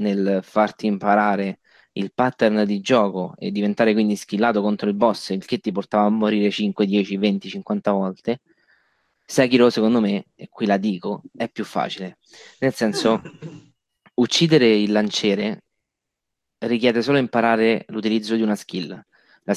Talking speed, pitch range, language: 145 wpm, 100-120 Hz, Italian